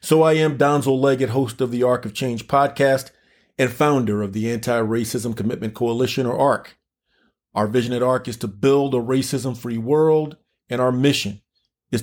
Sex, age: male, 40-59